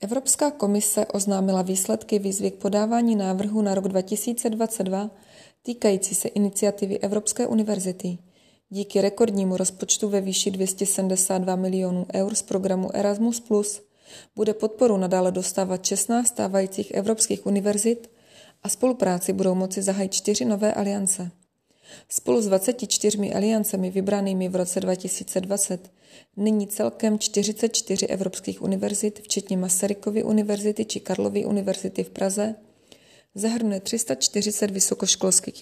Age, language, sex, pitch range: 20-39, Czech, female, 190-215 Hz